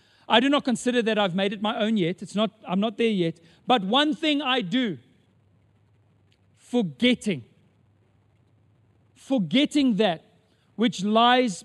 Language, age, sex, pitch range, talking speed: English, 40-59, male, 150-230 Hz, 140 wpm